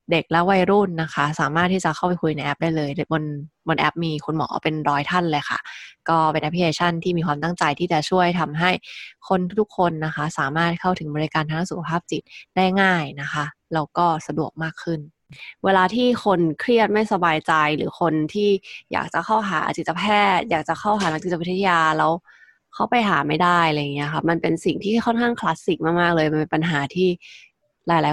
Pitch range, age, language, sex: 155-180 Hz, 20-39, Thai, female